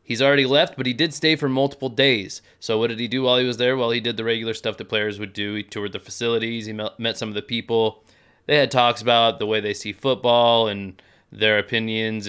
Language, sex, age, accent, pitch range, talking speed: English, male, 30-49, American, 110-135 Hz, 250 wpm